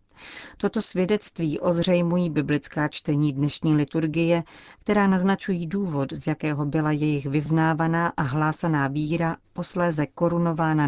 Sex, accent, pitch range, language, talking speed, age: female, native, 145-170 Hz, Czech, 110 wpm, 40-59